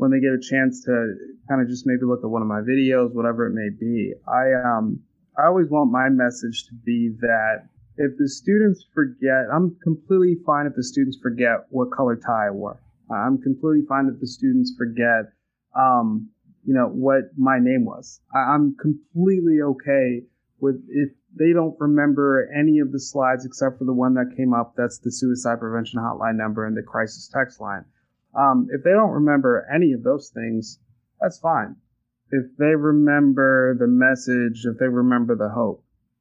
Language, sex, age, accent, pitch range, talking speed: English, male, 30-49, American, 120-140 Hz, 185 wpm